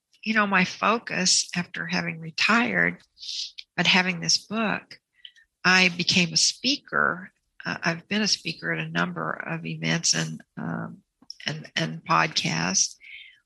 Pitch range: 160-200 Hz